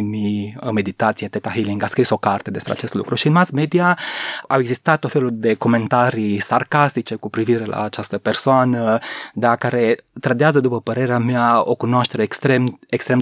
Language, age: Romanian, 20-39